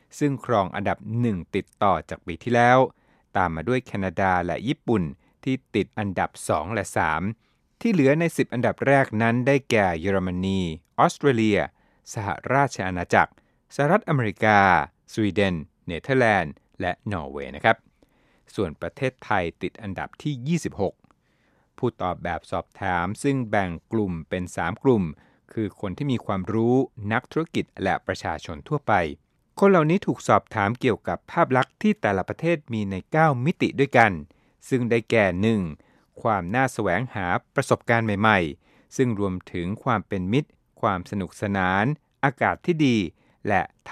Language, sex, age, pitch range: Thai, male, 60-79, 100-135 Hz